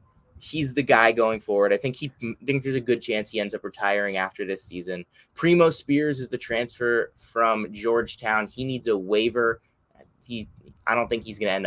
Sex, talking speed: male, 195 wpm